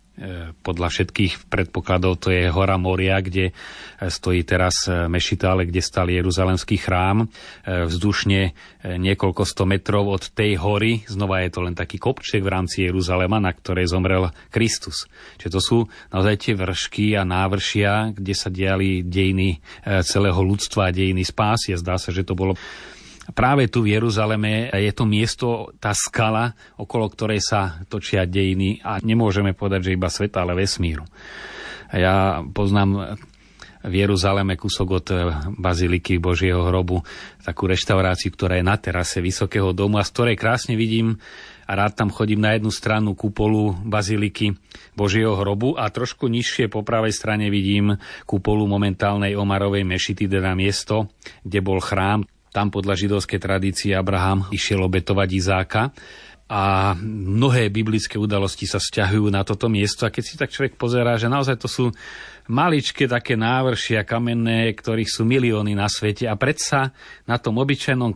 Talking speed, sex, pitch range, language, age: 150 wpm, male, 95-110 Hz, Slovak, 30-49